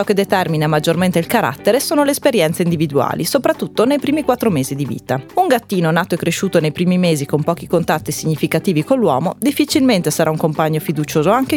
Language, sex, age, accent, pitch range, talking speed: Italian, female, 30-49, native, 160-220 Hz, 185 wpm